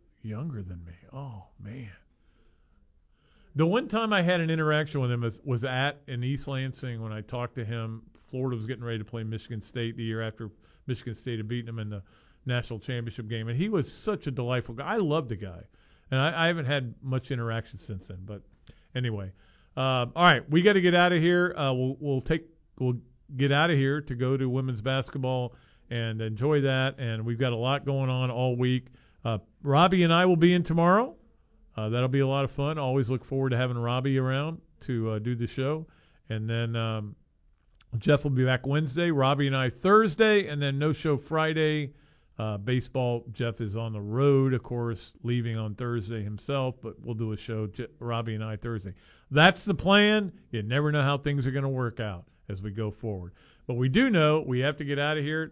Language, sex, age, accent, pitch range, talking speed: English, male, 50-69, American, 115-145 Hz, 215 wpm